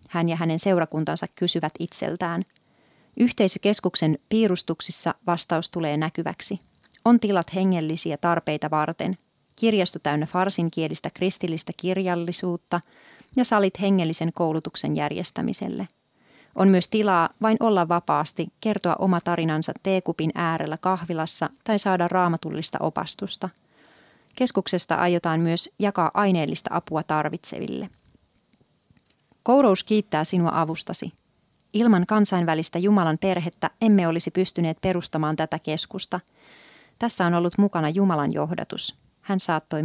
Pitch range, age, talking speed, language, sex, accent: 160-190 Hz, 30-49, 105 wpm, Finnish, female, native